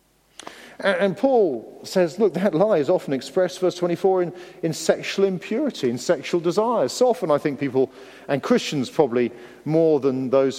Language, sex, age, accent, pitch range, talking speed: English, male, 50-69, British, 130-180 Hz, 165 wpm